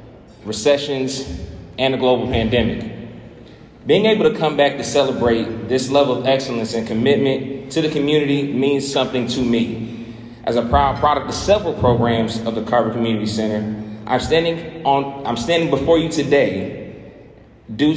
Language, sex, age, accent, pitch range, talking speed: English, male, 30-49, American, 115-135 Hz, 155 wpm